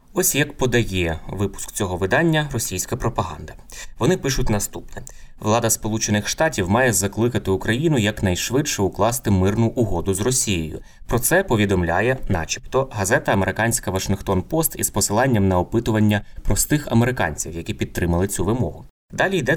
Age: 20-39